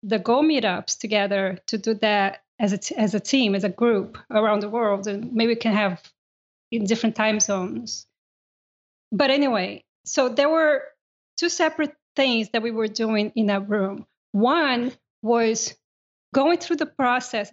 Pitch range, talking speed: 215-275 Hz, 170 wpm